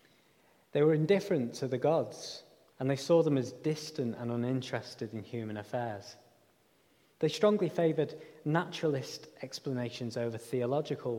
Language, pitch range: English, 120-155 Hz